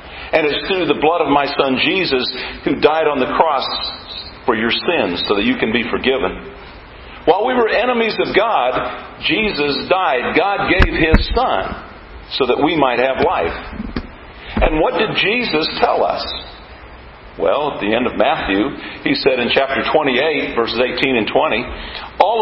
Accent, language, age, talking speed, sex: American, English, 50-69, 170 wpm, male